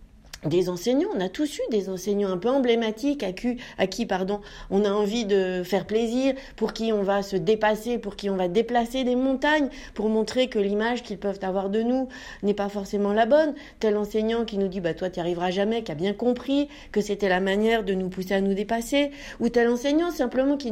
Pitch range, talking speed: 200-260 Hz, 225 wpm